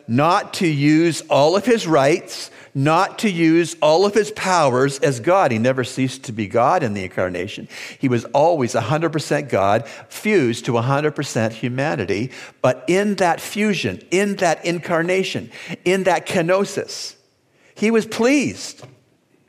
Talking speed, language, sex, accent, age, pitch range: 145 wpm, English, male, American, 50-69, 135-200 Hz